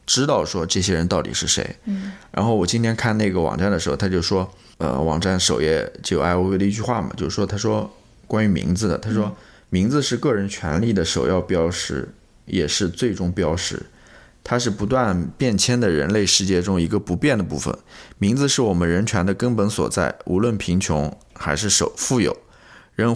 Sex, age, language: male, 20-39, Chinese